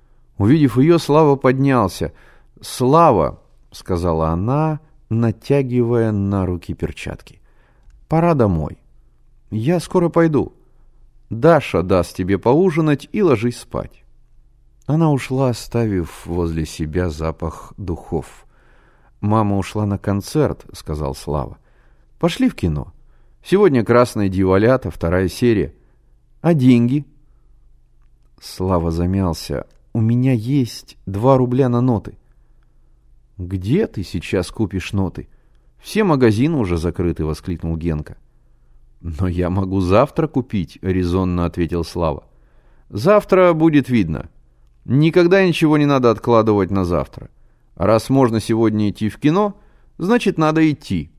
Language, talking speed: Russian, 120 wpm